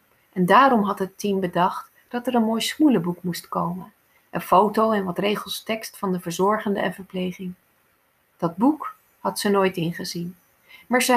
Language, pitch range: Dutch, 190-230 Hz